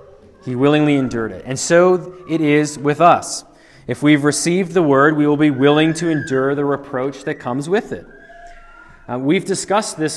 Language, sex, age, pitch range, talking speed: English, male, 20-39, 145-180 Hz, 185 wpm